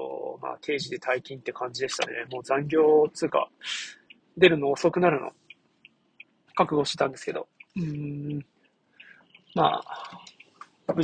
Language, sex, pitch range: Japanese, male, 135-180 Hz